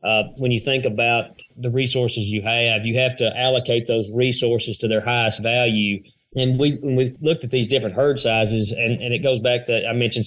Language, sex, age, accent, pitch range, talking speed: English, male, 30-49, American, 115-130 Hz, 210 wpm